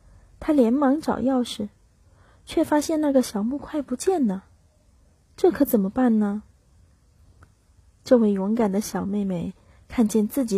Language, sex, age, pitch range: Chinese, female, 30-49, 185-255 Hz